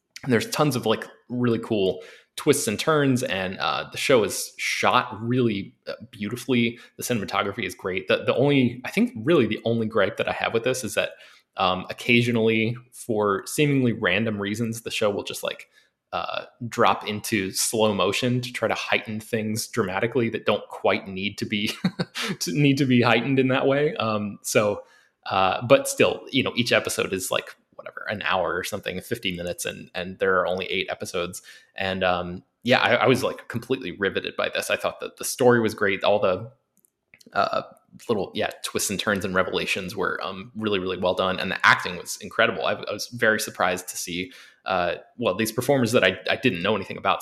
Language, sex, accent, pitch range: English, male, American, 100-125 Hz